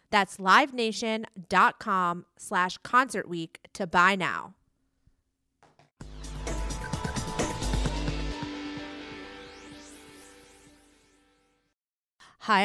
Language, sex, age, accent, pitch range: English, female, 30-49, American, 175-235 Hz